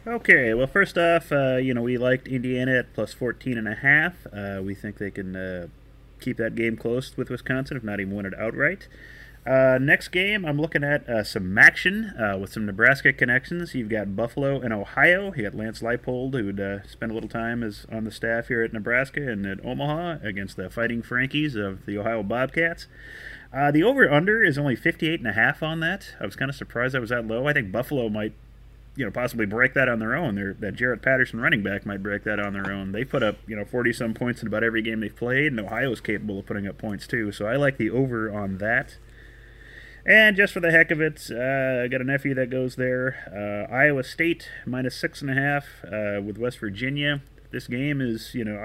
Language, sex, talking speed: English, male, 230 wpm